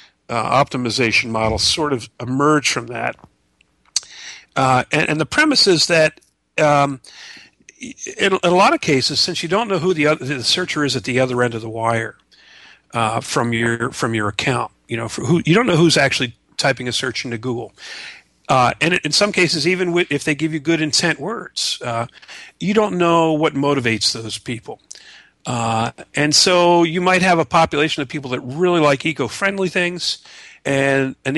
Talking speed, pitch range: 190 wpm, 125-165 Hz